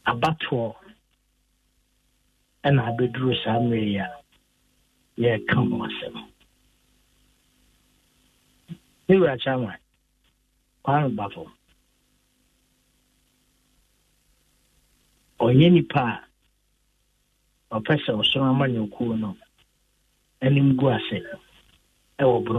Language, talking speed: English, 35 wpm